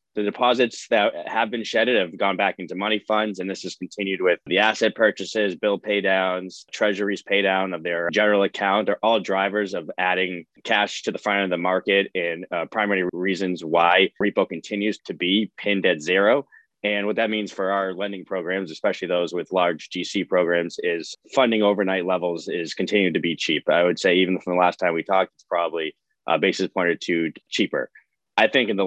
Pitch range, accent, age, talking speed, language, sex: 90-105 Hz, American, 20-39, 200 wpm, English, male